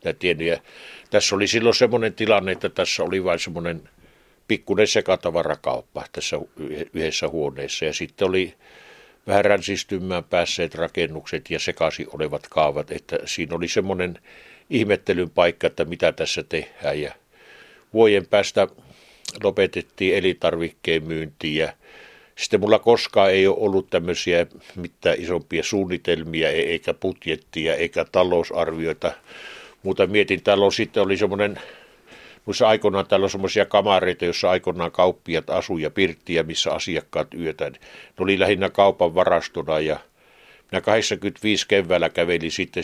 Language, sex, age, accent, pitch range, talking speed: Finnish, male, 60-79, native, 85-105 Hz, 125 wpm